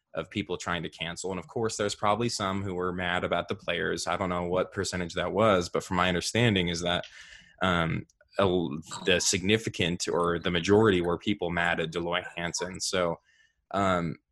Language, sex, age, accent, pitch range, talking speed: English, male, 20-39, American, 90-110 Hz, 190 wpm